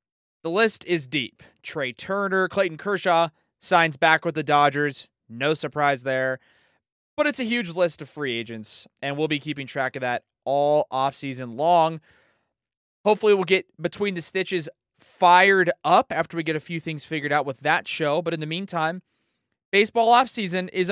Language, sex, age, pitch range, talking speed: English, male, 20-39, 130-175 Hz, 170 wpm